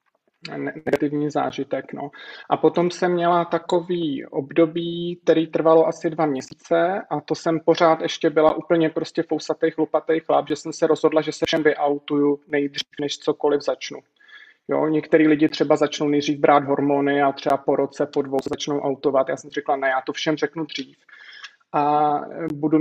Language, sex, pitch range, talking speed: Czech, male, 145-160 Hz, 165 wpm